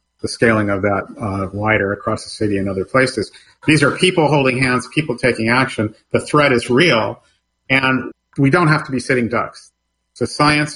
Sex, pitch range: male, 110-130 Hz